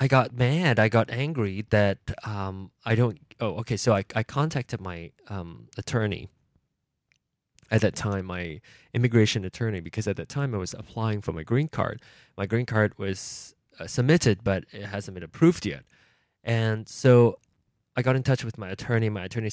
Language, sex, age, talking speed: English, male, 20-39, 180 wpm